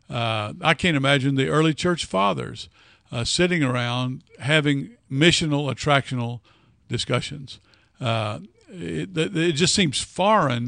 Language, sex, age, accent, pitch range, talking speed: English, male, 50-69, American, 120-150 Hz, 120 wpm